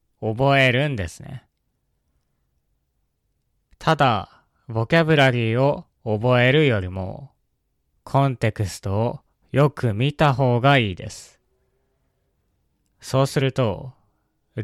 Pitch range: 100-140 Hz